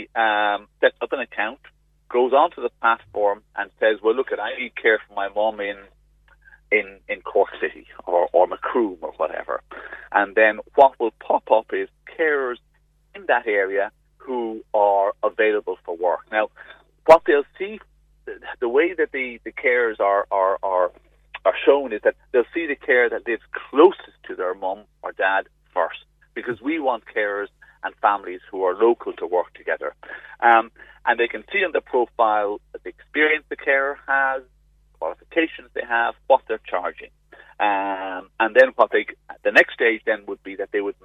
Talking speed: 175 wpm